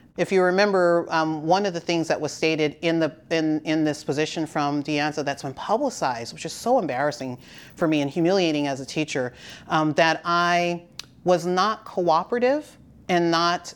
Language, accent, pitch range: English, American, 155-200 Hz